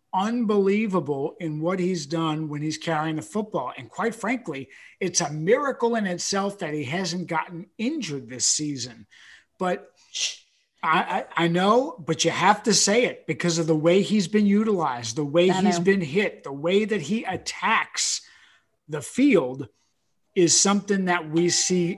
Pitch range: 160-200 Hz